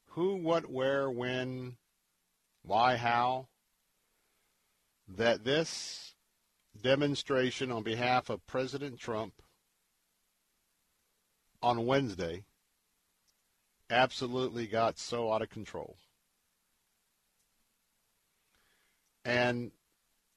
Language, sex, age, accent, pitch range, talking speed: English, male, 50-69, American, 120-140 Hz, 70 wpm